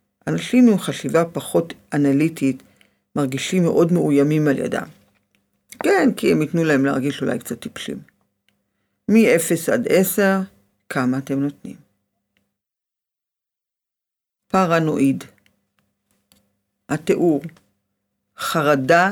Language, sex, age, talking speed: Hebrew, female, 50-69, 90 wpm